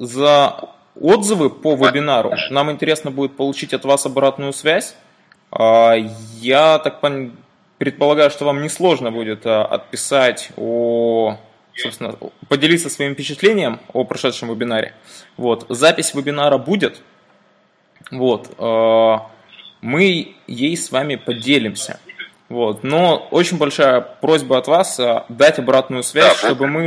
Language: Russian